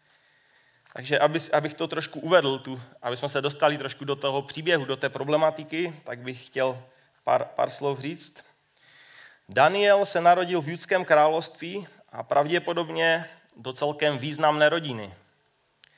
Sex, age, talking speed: male, 30-49, 125 wpm